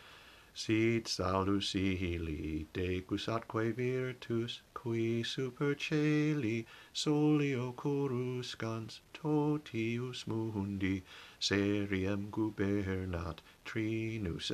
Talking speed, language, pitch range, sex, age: 60 wpm, English, 95-120 Hz, male, 50-69